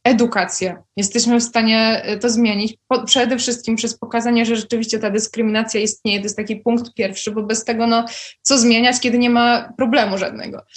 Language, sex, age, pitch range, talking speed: Polish, female, 20-39, 230-270 Hz, 180 wpm